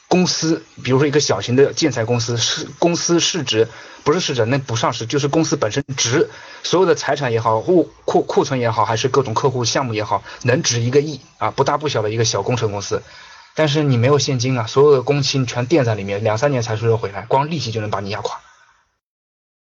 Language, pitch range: Chinese, 120-170 Hz